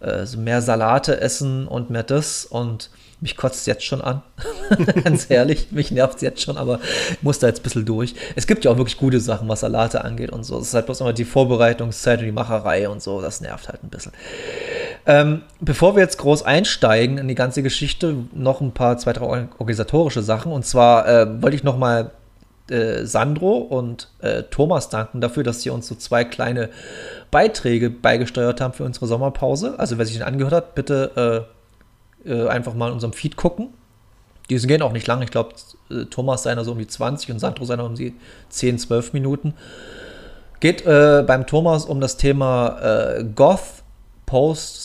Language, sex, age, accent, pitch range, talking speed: German, male, 30-49, German, 120-145 Hz, 195 wpm